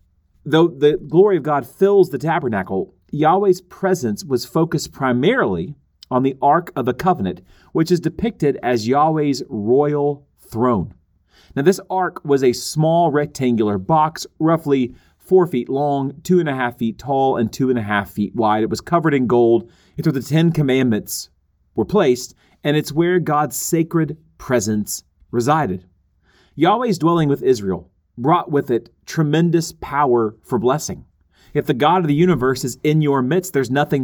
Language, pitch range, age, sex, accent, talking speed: English, 115-165 Hz, 30-49, male, American, 165 wpm